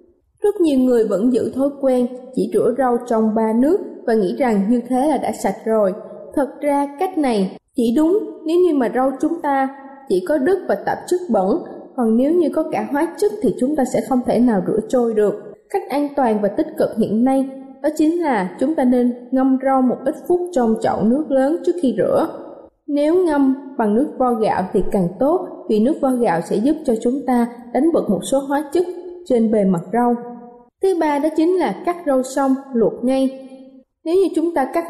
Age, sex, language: 20-39, female, Vietnamese